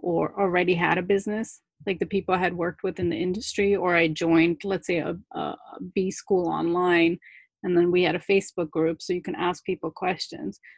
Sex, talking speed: female, 210 wpm